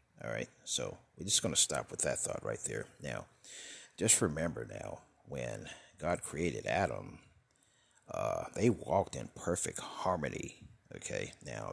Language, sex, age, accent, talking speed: English, male, 50-69, American, 150 wpm